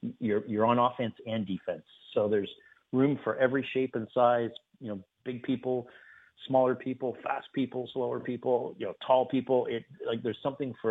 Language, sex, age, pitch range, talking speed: English, male, 40-59, 105-130 Hz, 180 wpm